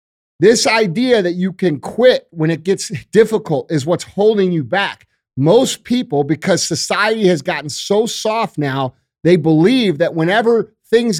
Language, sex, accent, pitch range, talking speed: English, male, American, 165-220 Hz, 155 wpm